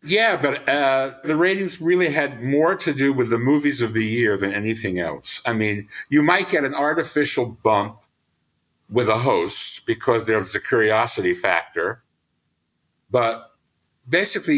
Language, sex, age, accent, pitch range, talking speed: English, male, 60-79, American, 110-155 Hz, 155 wpm